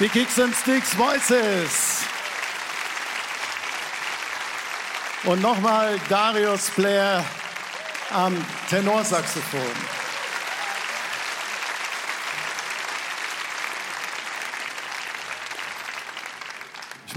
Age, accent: 50-69, German